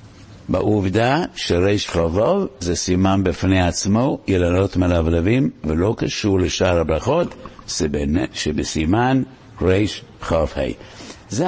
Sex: male